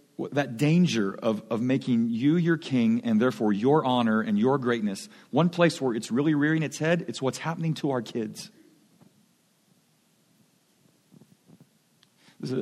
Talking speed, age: 145 wpm, 40-59